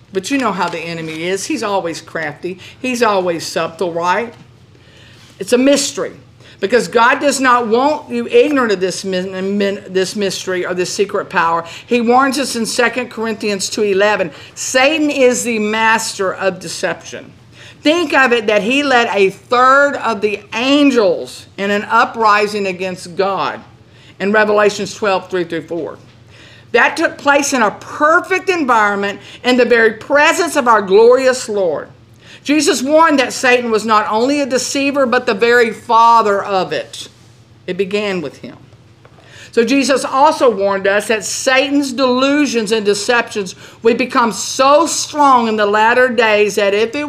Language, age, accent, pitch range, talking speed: English, 50-69, American, 175-255 Hz, 150 wpm